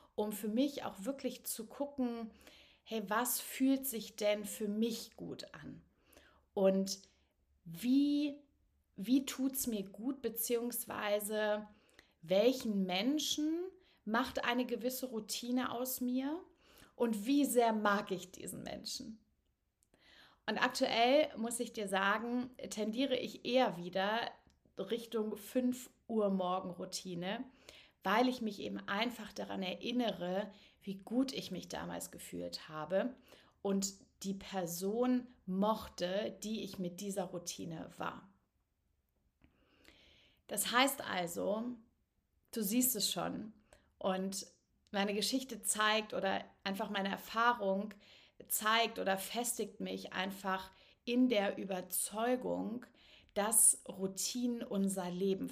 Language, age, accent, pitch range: German, 30-49, German, 195-245 Hz